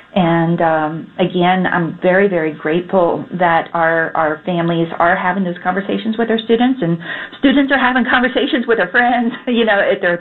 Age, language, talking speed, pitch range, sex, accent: 40-59, English, 175 wpm, 170-210 Hz, female, American